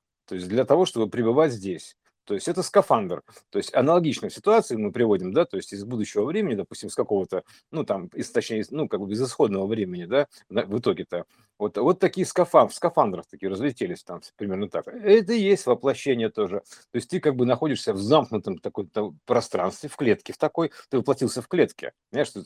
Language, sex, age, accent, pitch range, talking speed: Russian, male, 50-69, native, 110-170 Hz, 190 wpm